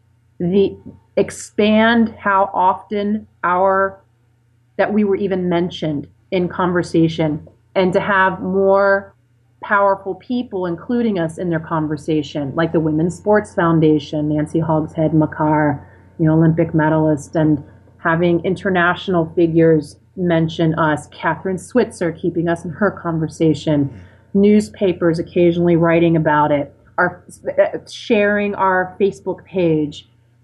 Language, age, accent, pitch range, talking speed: English, 30-49, American, 155-185 Hz, 115 wpm